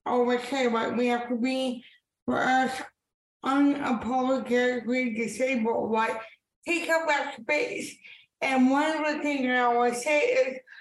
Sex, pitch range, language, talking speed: female, 255-295 Hz, English, 145 wpm